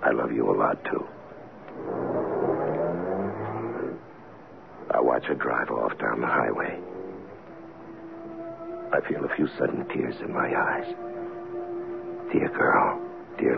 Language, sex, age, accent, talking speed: English, male, 60-79, American, 115 wpm